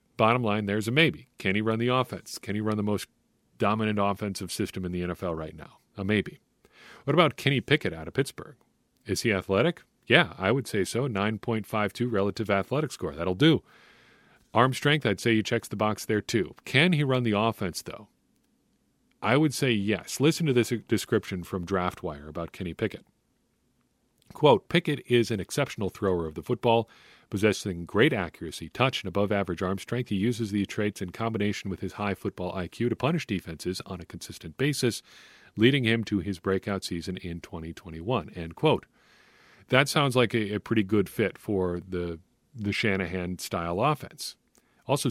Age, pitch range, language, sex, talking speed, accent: 40-59, 95-120 Hz, English, male, 180 wpm, American